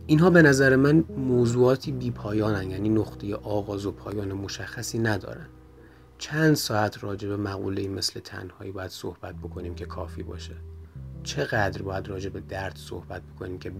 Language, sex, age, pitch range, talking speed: Persian, male, 30-49, 90-115 Hz, 150 wpm